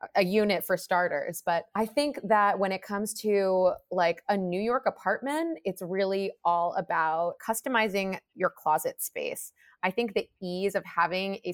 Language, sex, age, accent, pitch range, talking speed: English, female, 20-39, American, 170-200 Hz, 165 wpm